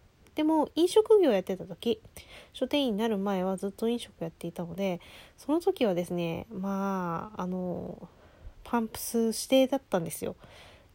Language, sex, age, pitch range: Japanese, female, 20-39, 185-285 Hz